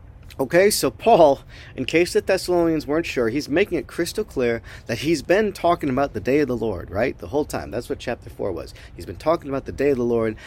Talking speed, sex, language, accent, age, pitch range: 240 wpm, male, English, American, 40-59, 105-155 Hz